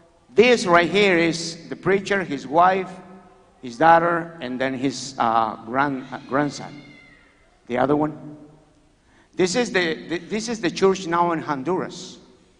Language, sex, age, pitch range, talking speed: English, male, 50-69, 150-185 Hz, 145 wpm